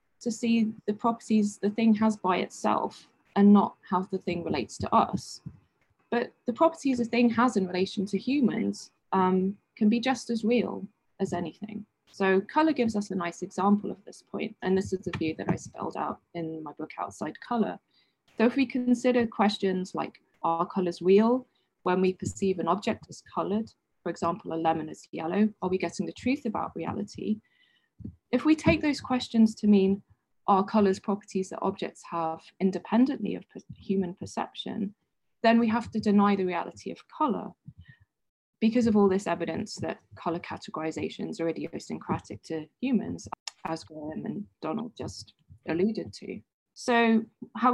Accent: British